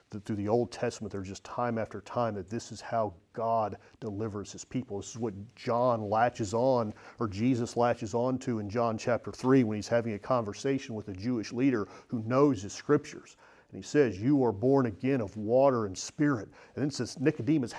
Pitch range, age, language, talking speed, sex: 105-145 Hz, 40-59, English, 210 wpm, male